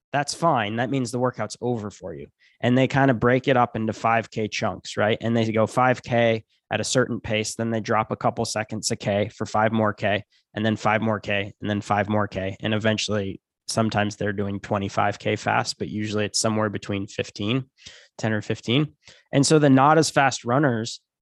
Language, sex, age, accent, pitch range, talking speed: English, male, 10-29, American, 110-130 Hz, 205 wpm